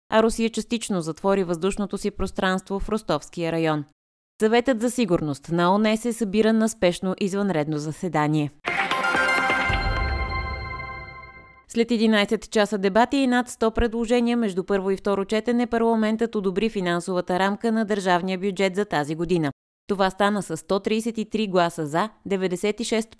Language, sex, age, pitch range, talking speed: Bulgarian, female, 20-39, 170-220 Hz, 130 wpm